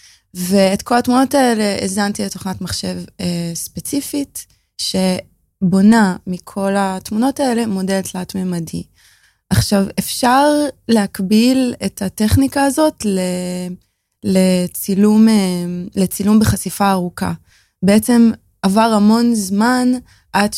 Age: 20-39